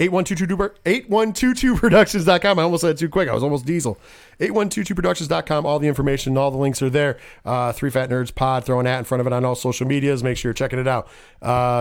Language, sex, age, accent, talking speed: English, male, 40-59, American, 220 wpm